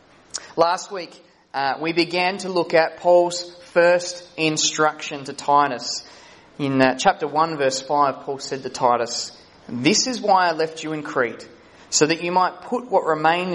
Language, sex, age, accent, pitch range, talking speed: English, male, 20-39, Australian, 130-165 Hz, 170 wpm